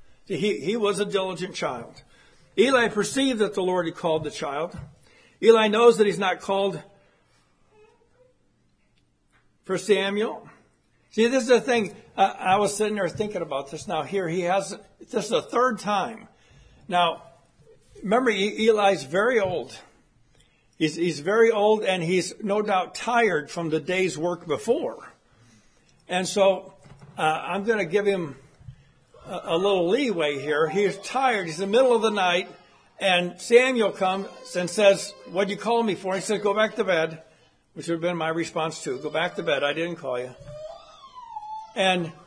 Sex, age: male, 60-79